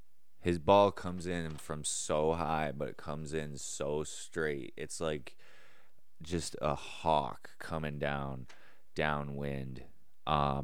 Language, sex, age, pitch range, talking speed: English, male, 20-39, 70-85 Hz, 125 wpm